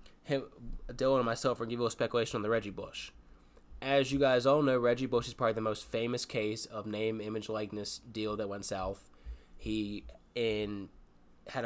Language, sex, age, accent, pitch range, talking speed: English, male, 10-29, American, 100-125 Hz, 195 wpm